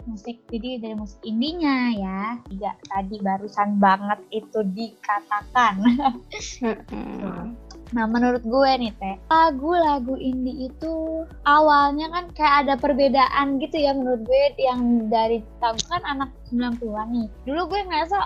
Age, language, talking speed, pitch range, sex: 20-39, Indonesian, 130 wpm, 235-295 Hz, female